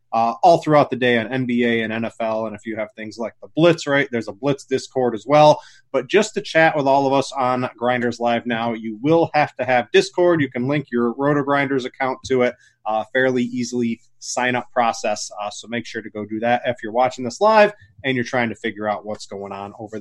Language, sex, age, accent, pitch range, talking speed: English, male, 30-49, American, 115-150 Hz, 235 wpm